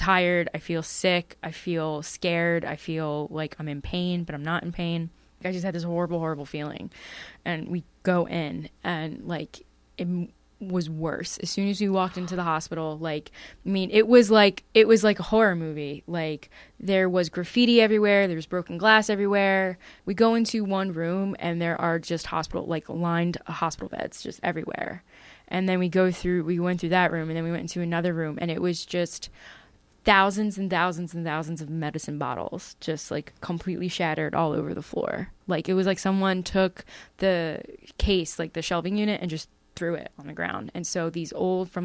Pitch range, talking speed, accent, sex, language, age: 160-190 Hz, 200 wpm, American, female, English, 10-29